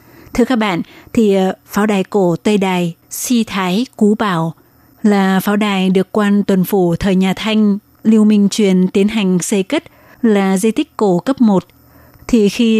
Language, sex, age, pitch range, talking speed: Vietnamese, female, 20-39, 190-225 Hz, 180 wpm